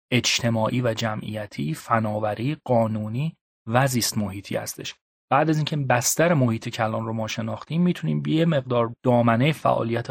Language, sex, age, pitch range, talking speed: Persian, male, 30-49, 110-145 Hz, 130 wpm